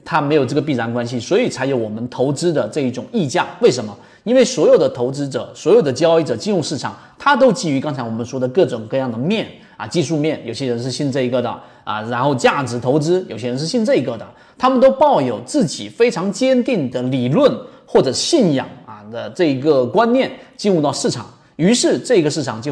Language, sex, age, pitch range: Chinese, male, 30-49, 125-175 Hz